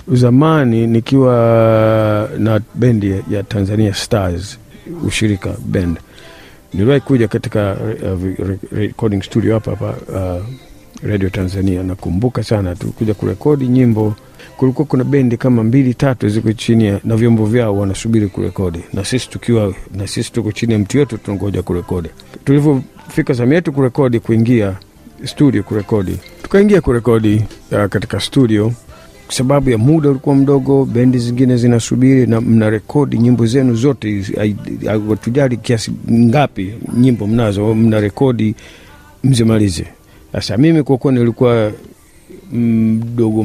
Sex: male